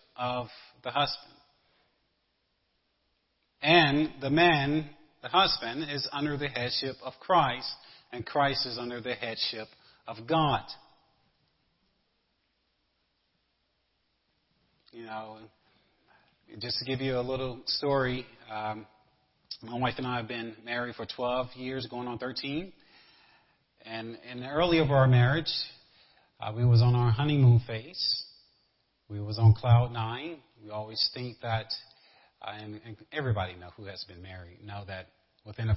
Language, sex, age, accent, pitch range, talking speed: English, male, 40-59, American, 115-145 Hz, 135 wpm